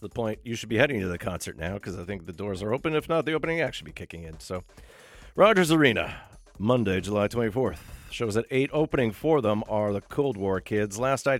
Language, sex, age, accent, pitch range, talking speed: English, male, 40-59, American, 90-130 Hz, 235 wpm